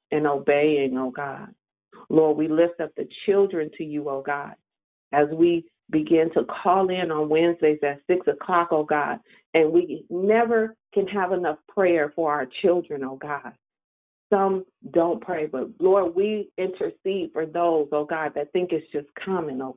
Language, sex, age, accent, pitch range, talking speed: English, female, 40-59, American, 150-185 Hz, 170 wpm